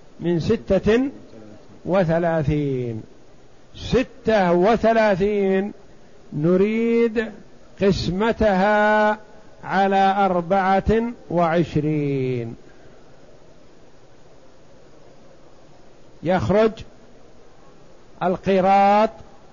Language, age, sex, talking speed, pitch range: Arabic, 50-69, male, 35 wpm, 170-215 Hz